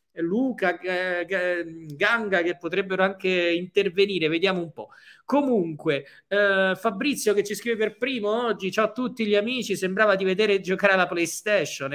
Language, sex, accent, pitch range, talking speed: Italian, male, native, 155-195 Hz, 145 wpm